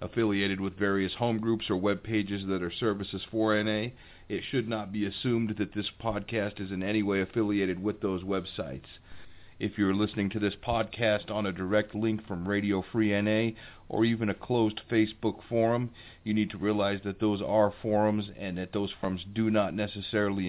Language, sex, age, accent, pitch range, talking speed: English, male, 40-59, American, 95-110 Hz, 185 wpm